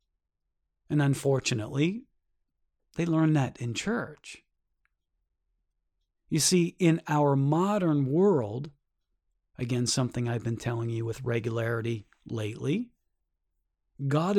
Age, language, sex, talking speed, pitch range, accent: 40-59, English, male, 95 wpm, 110-155 Hz, American